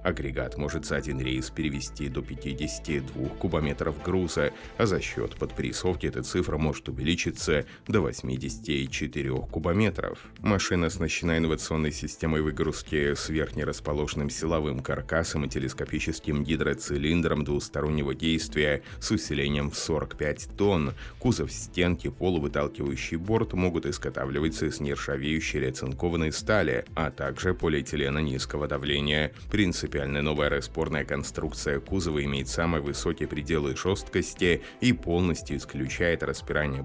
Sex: male